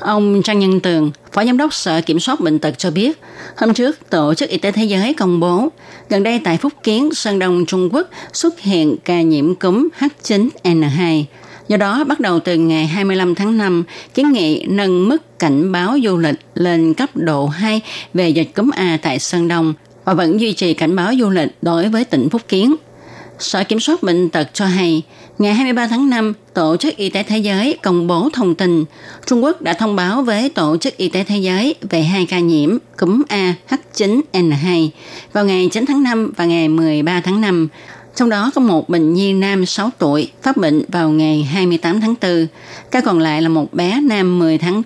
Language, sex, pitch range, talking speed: Vietnamese, female, 165-225 Hz, 205 wpm